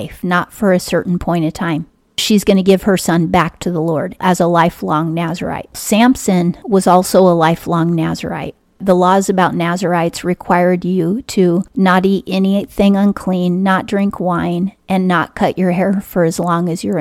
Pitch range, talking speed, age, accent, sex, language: 170-195 Hz, 180 wpm, 40-59, American, female, English